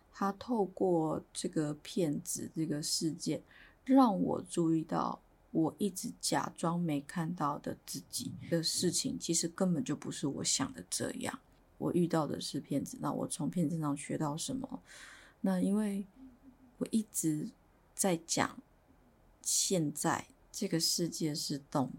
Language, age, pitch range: Chinese, 20-39, 165-235 Hz